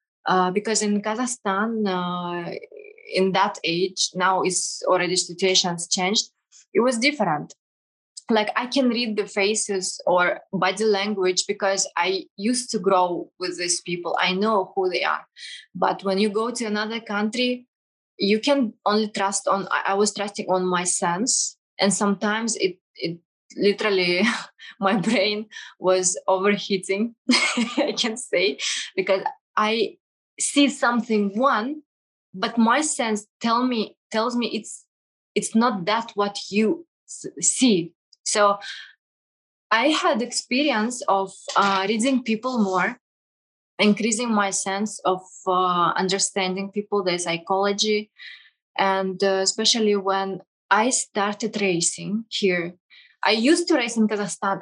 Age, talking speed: 20-39, 130 wpm